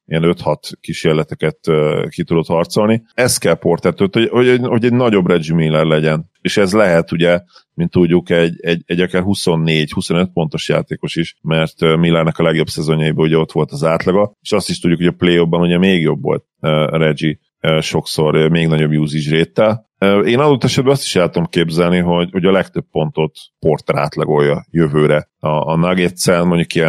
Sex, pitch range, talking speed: male, 80-90 Hz, 175 wpm